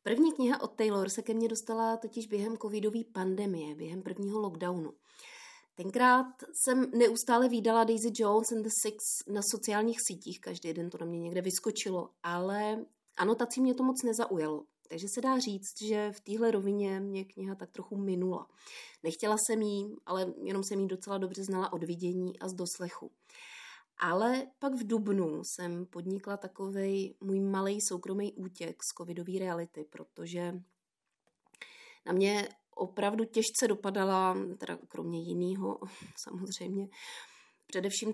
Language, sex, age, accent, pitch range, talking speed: Czech, female, 20-39, native, 180-225 Hz, 145 wpm